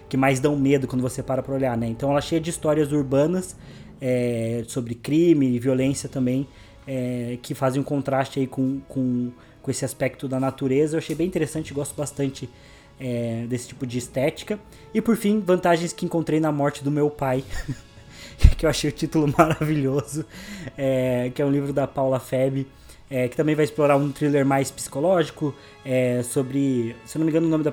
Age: 20-39